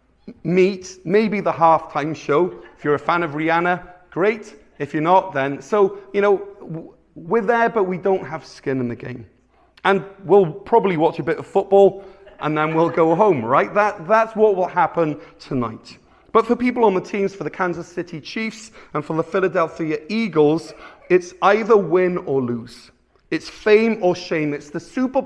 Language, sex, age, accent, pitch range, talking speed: English, male, 30-49, British, 155-205 Hz, 185 wpm